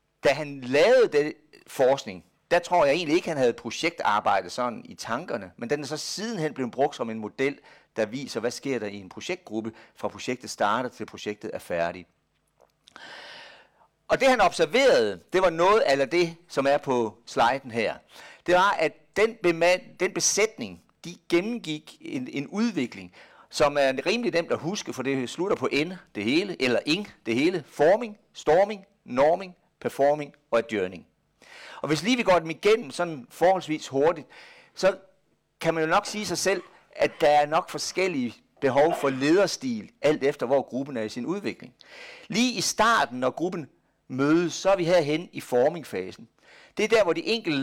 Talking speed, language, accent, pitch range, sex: 180 wpm, Danish, native, 140-200 Hz, male